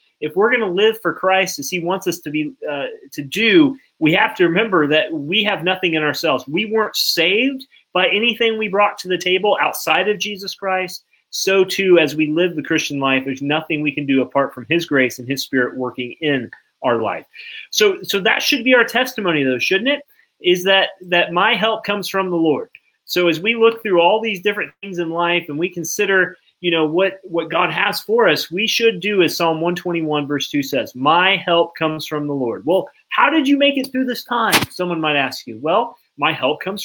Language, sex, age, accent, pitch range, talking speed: English, male, 30-49, American, 165-230 Hz, 225 wpm